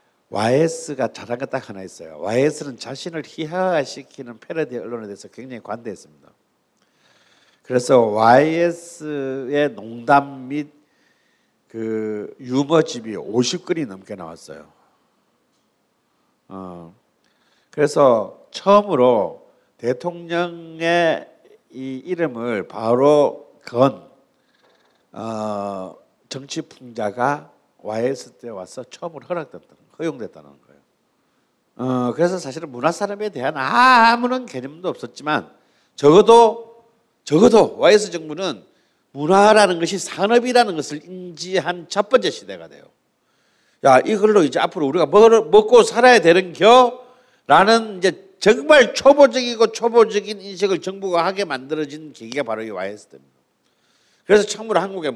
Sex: male